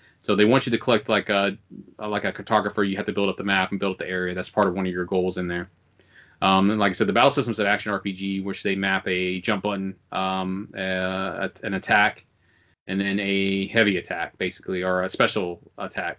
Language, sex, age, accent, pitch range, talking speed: English, male, 30-49, American, 95-110 Hz, 235 wpm